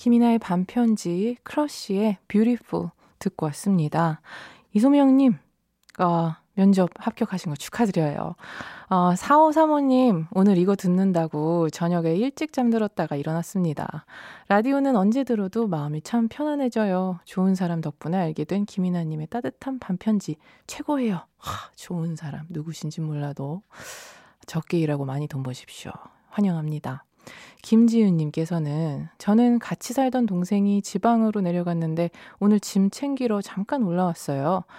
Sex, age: female, 20-39